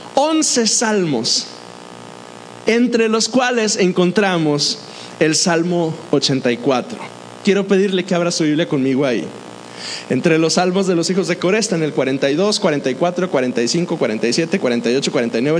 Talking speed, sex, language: 125 wpm, male, Spanish